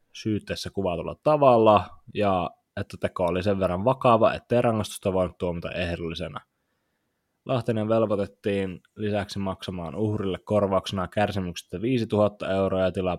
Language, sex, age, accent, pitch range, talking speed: Finnish, male, 20-39, native, 90-105 Hz, 120 wpm